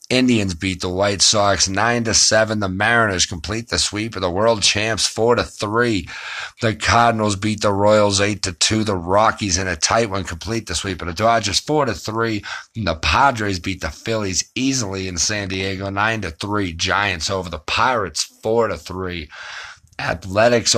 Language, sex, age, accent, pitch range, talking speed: English, male, 50-69, American, 95-110 Hz, 180 wpm